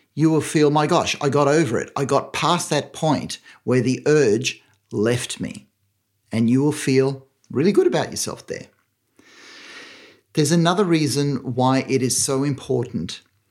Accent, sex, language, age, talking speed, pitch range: Australian, male, English, 50-69, 160 wpm, 110-150 Hz